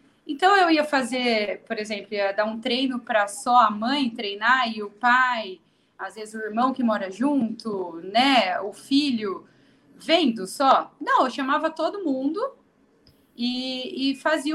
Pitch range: 230-305 Hz